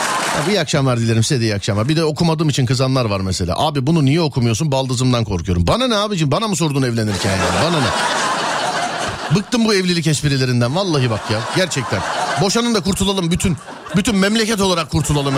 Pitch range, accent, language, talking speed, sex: 135-200 Hz, native, Turkish, 175 wpm, male